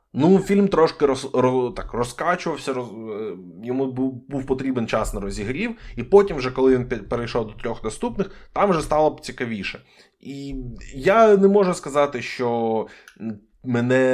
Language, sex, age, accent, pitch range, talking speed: Ukrainian, male, 20-39, native, 110-150 Hz, 155 wpm